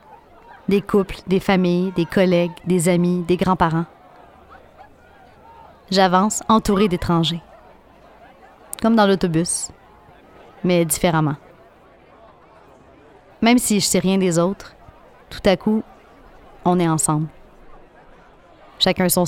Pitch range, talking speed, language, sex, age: 170-195 Hz, 105 wpm, French, female, 30-49